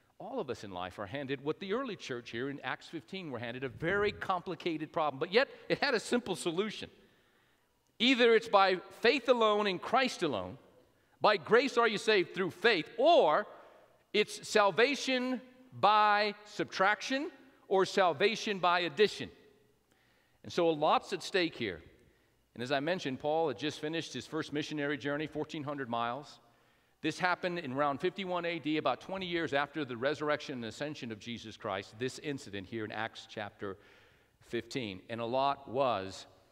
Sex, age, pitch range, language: male, 50-69, 125-185 Hz, English